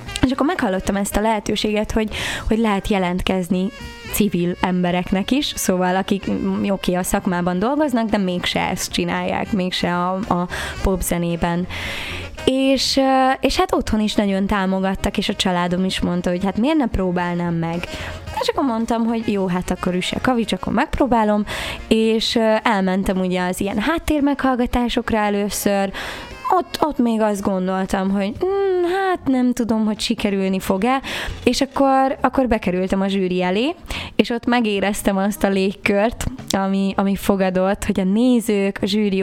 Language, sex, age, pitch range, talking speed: Hungarian, female, 20-39, 190-225 Hz, 150 wpm